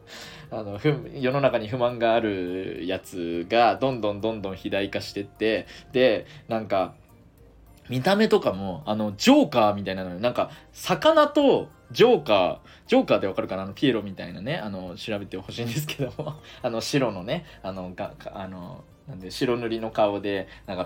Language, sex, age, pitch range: Japanese, male, 20-39, 105-165 Hz